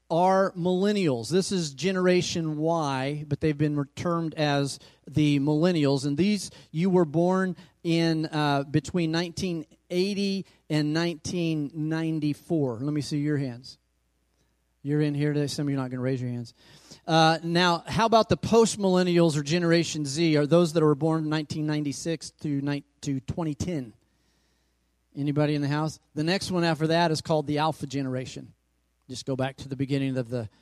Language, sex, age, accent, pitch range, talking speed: English, male, 40-59, American, 135-175 Hz, 165 wpm